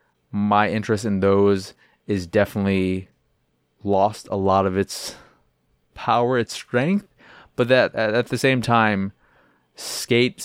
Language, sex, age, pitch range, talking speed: English, male, 20-39, 95-110 Hz, 120 wpm